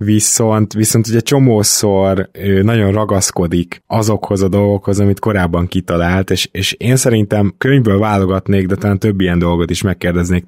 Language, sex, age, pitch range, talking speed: Hungarian, male, 20-39, 95-110 Hz, 145 wpm